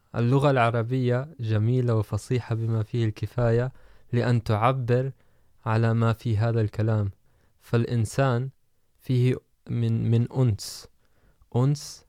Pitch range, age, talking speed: 110-125 Hz, 20-39, 100 wpm